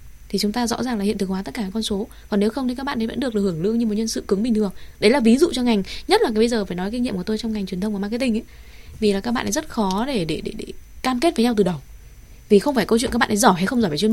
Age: 20-39